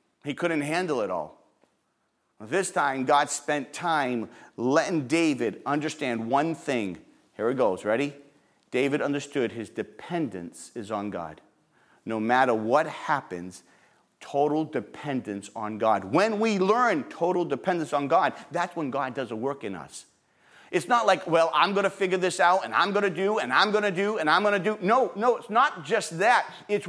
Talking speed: 185 wpm